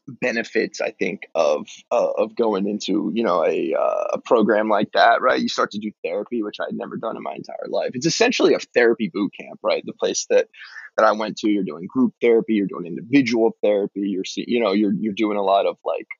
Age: 20-39